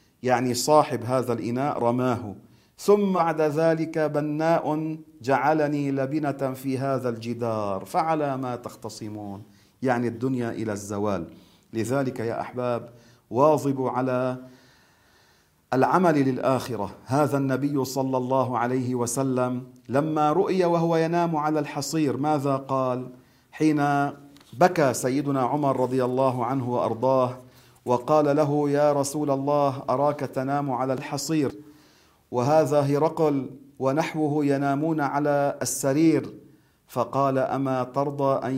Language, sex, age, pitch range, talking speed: Arabic, male, 40-59, 125-150 Hz, 105 wpm